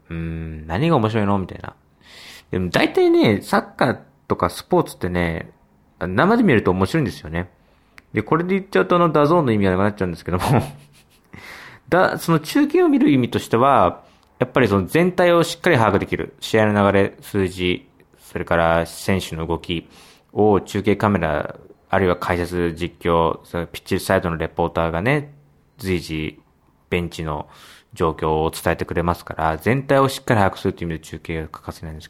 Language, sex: Japanese, male